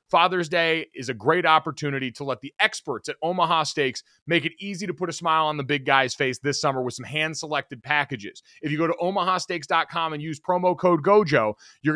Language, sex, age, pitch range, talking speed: English, male, 30-49, 135-170 Hz, 210 wpm